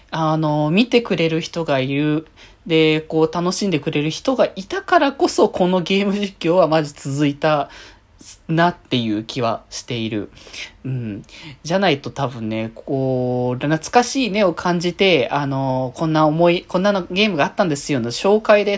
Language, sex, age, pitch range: Japanese, male, 20-39, 115-175 Hz